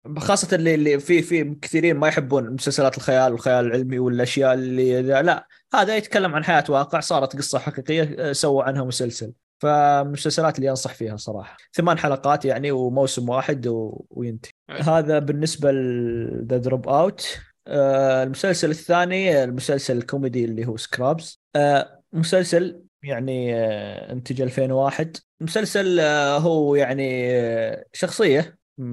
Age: 20-39